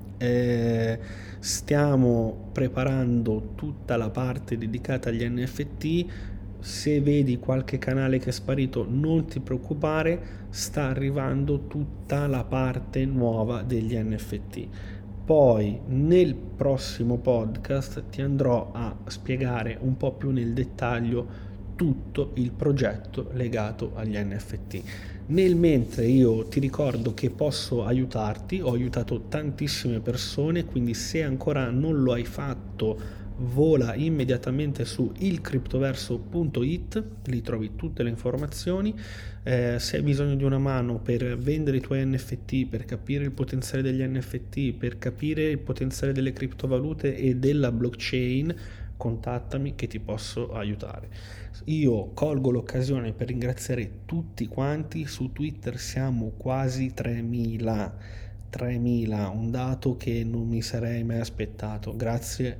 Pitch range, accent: 110-130 Hz, native